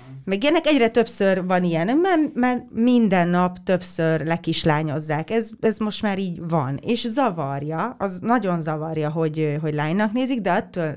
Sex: female